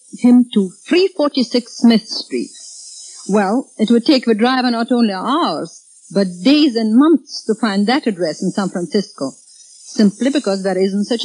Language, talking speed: English, 160 wpm